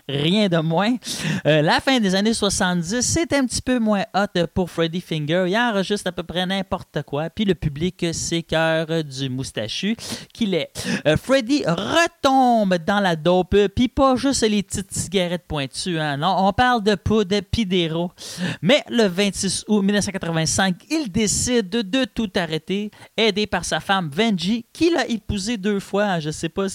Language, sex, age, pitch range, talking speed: French, male, 30-49, 160-220 Hz, 180 wpm